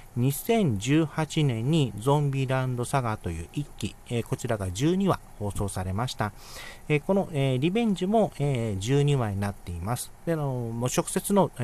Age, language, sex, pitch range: 40-59, Japanese, male, 105-150 Hz